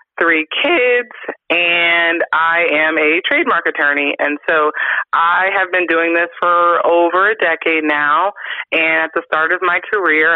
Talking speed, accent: 155 wpm, American